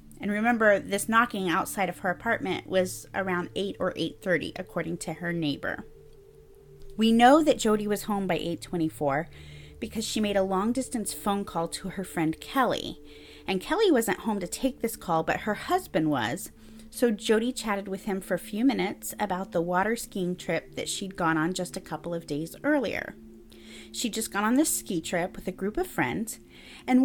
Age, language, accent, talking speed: 30-49, English, American, 190 wpm